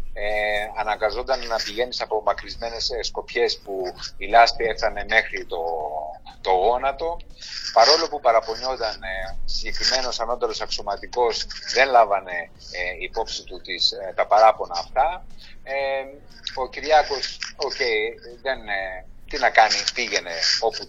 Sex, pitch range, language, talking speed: male, 115-160 Hz, Greek, 125 wpm